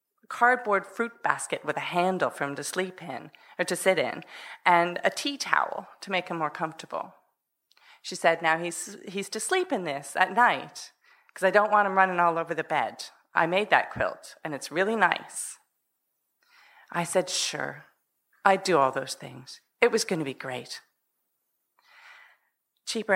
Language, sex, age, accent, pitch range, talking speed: English, female, 40-59, American, 160-195 Hz, 175 wpm